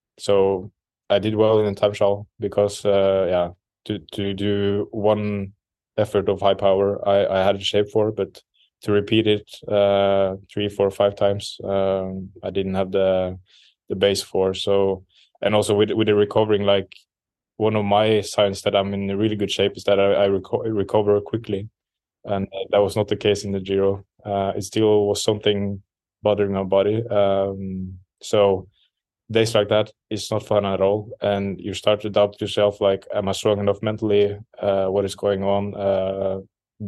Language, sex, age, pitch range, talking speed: English, male, 20-39, 95-105 Hz, 180 wpm